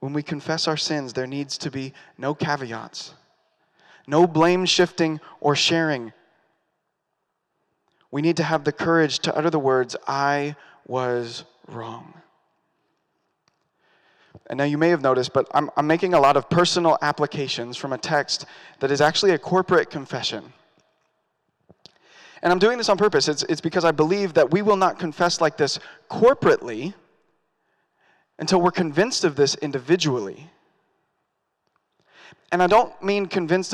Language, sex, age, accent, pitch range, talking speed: English, male, 30-49, American, 145-185 Hz, 150 wpm